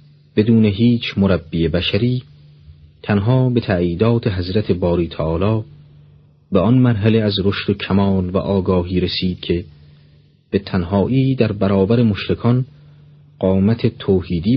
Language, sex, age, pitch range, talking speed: Persian, male, 40-59, 95-135 Hz, 110 wpm